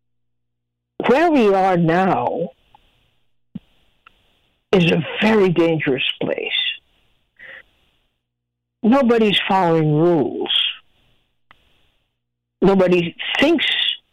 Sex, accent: female, American